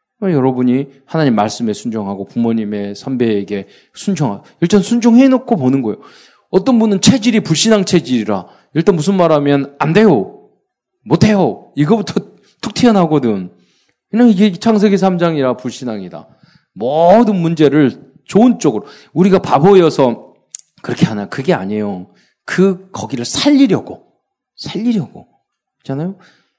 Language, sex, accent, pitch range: Korean, male, native, 135-215 Hz